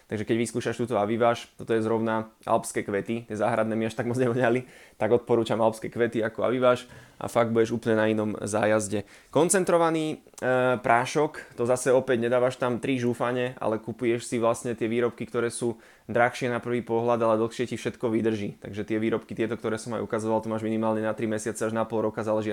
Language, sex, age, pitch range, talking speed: Slovak, male, 20-39, 110-120 Hz, 200 wpm